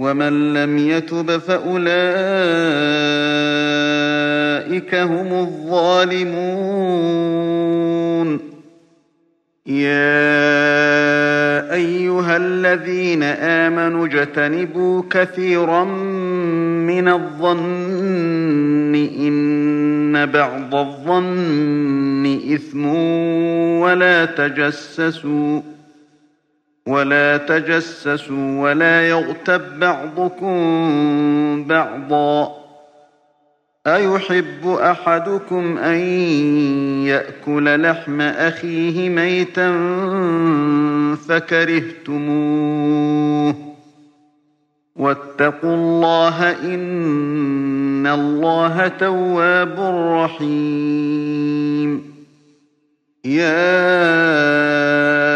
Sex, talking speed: male, 45 wpm